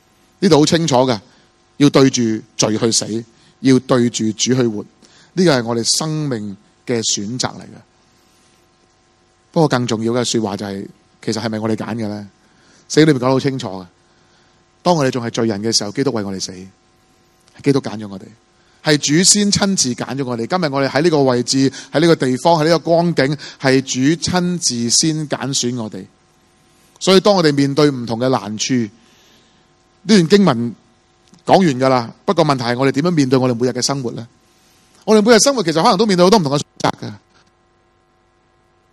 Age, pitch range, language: 30-49, 120-170 Hz, Chinese